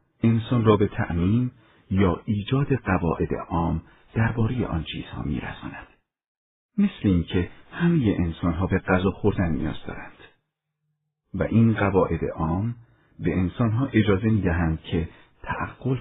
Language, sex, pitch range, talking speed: Persian, male, 85-115 Hz, 115 wpm